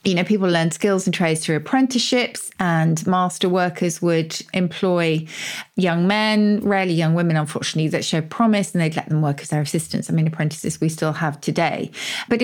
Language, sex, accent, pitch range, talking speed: English, female, British, 165-215 Hz, 190 wpm